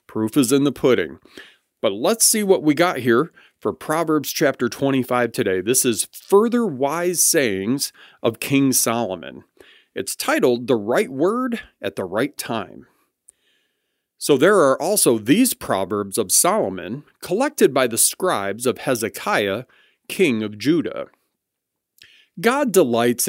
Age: 40-59